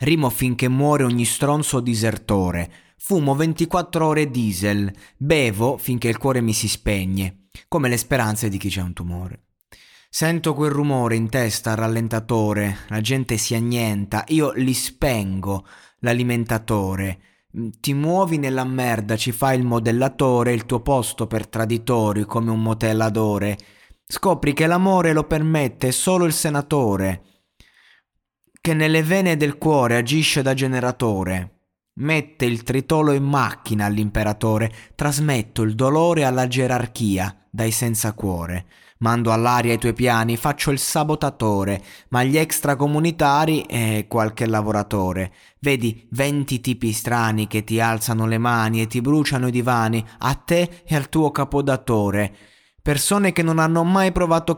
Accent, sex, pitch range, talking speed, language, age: native, male, 110-145 Hz, 135 wpm, Italian, 30-49